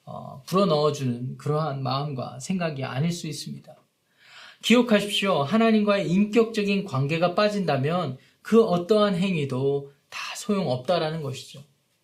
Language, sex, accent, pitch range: Korean, male, native, 150-215 Hz